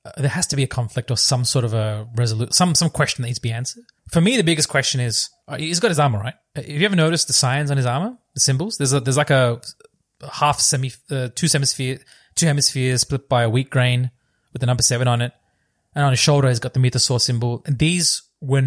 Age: 20-39